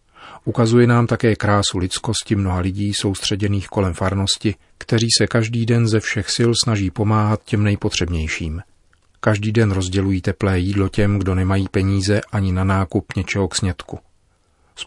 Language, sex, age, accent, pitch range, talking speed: Czech, male, 40-59, native, 95-110 Hz, 150 wpm